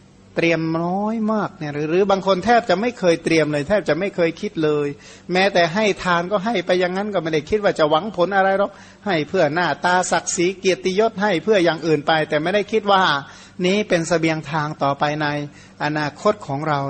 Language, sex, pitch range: Thai, male, 155-190 Hz